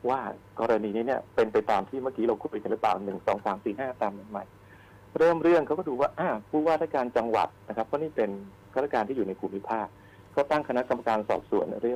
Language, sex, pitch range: Thai, male, 100-135 Hz